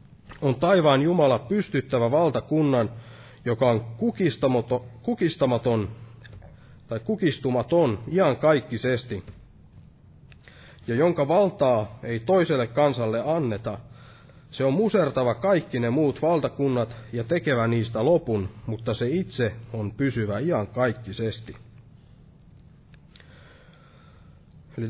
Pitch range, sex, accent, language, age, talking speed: 115-155 Hz, male, native, Finnish, 30-49, 85 wpm